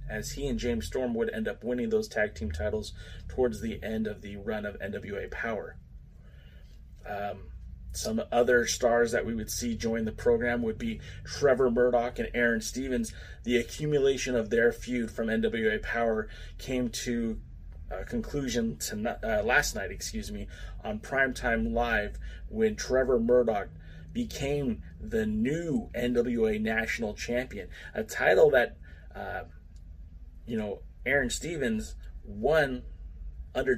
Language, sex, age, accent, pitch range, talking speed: English, male, 30-49, American, 90-125 Hz, 140 wpm